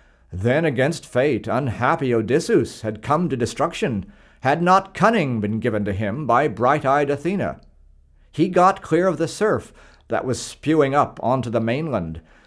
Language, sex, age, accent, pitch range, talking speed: English, male, 50-69, American, 110-150 Hz, 155 wpm